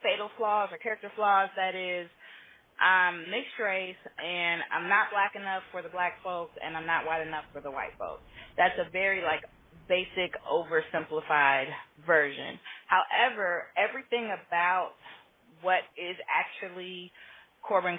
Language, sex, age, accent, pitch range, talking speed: English, female, 30-49, American, 175-210 Hz, 140 wpm